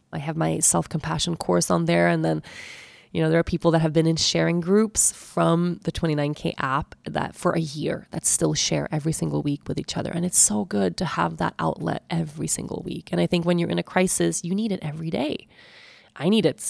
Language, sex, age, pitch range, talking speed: English, female, 20-39, 160-190 Hz, 230 wpm